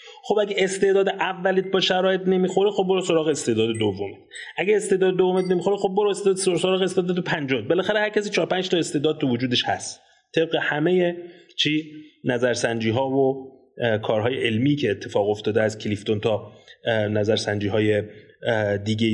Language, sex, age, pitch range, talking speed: Persian, male, 30-49, 130-190 Hz, 155 wpm